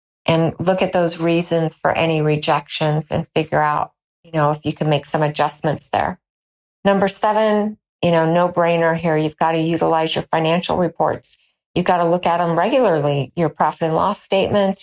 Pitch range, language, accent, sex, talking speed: 155-175 Hz, English, American, female, 185 wpm